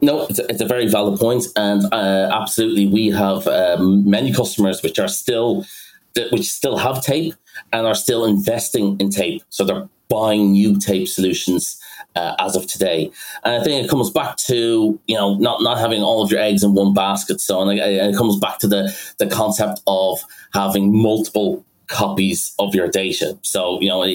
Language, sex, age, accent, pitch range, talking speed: English, male, 30-49, British, 95-110 Hz, 195 wpm